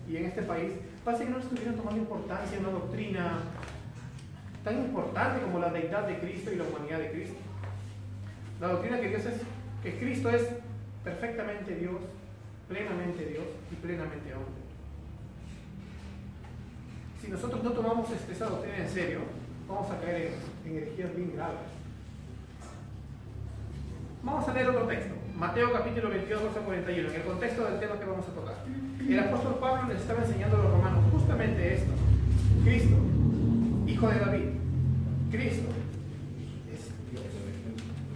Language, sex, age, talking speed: Spanish, male, 30-49, 145 wpm